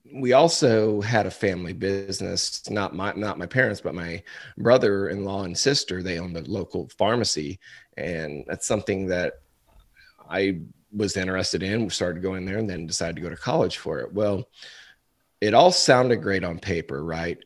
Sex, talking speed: male, 170 wpm